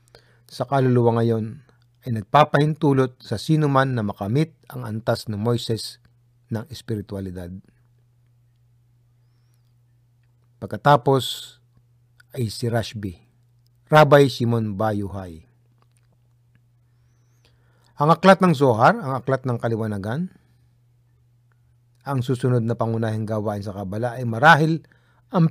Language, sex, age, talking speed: Filipino, male, 50-69, 95 wpm